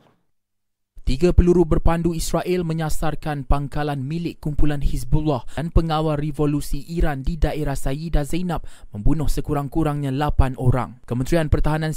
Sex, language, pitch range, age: male, Malay, 125-155 Hz, 20-39